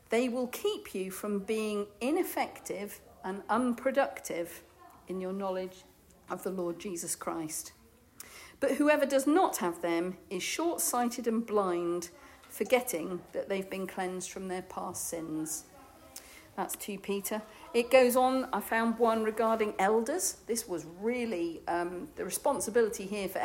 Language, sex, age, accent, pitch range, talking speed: English, female, 50-69, British, 185-250 Hz, 140 wpm